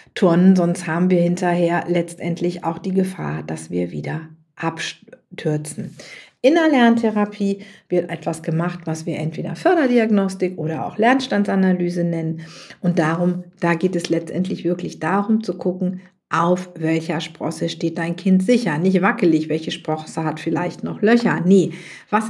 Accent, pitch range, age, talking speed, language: German, 165-200 Hz, 50-69, 145 wpm, German